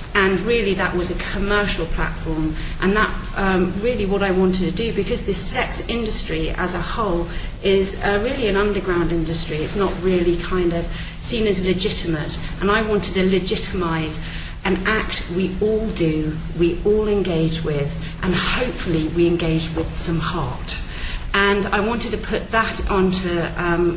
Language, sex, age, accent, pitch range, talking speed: English, female, 40-59, British, 170-200 Hz, 165 wpm